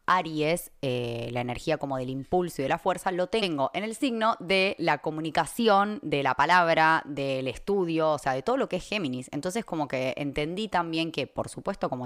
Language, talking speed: Spanish, 205 wpm